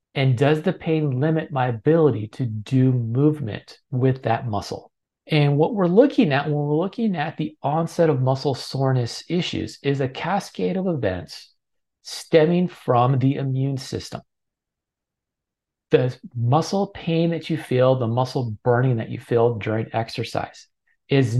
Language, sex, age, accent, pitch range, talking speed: English, male, 40-59, American, 120-160 Hz, 150 wpm